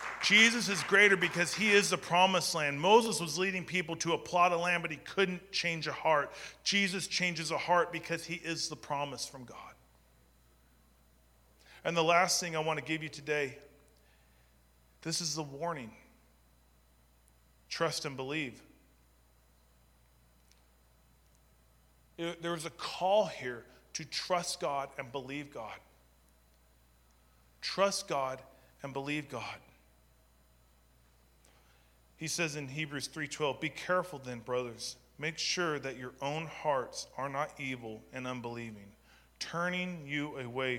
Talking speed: 135 wpm